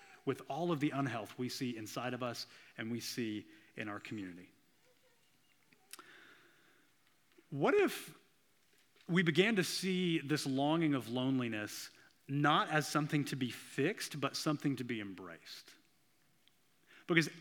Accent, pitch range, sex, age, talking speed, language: American, 125-175 Hz, male, 30-49, 130 wpm, English